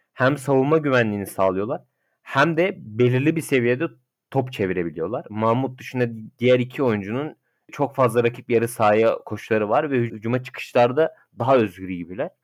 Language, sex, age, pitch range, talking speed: Turkish, male, 30-49, 110-135 Hz, 140 wpm